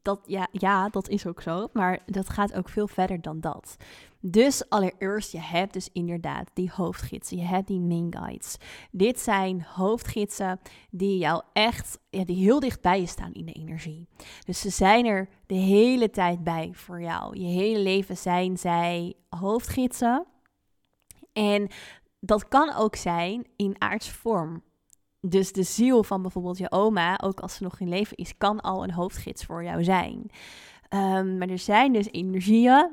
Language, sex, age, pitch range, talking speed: Dutch, female, 20-39, 180-210 Hz, 170 wpm